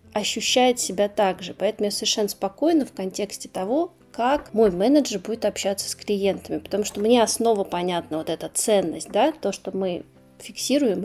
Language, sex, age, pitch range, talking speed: Russian, female, 20-39, 195-240 Hz, 165 wpm